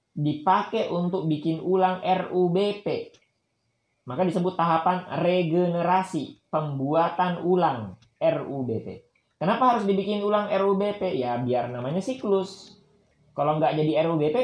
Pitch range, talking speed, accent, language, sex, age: 140-195 Hz, 105 wpm, native, Indonesian, male, 20-39